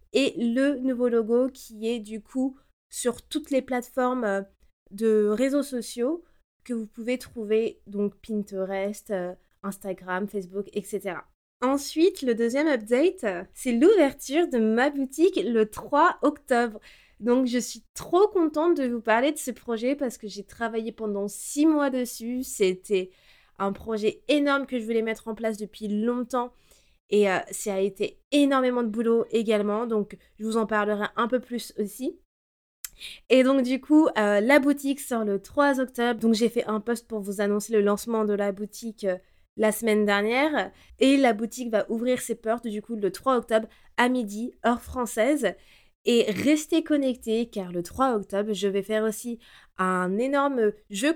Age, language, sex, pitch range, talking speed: 20-39, French, female, 210-260 Hz, 170 wpm